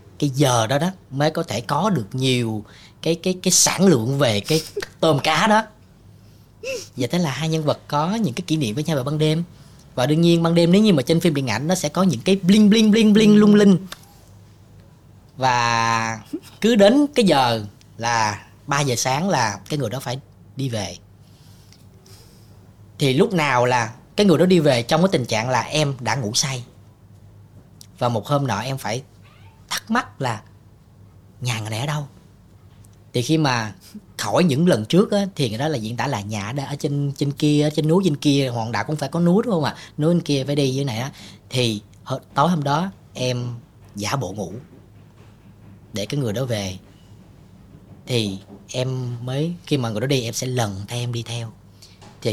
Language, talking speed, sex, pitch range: Vietnamese, 205 wpm, female, 105-155 Hz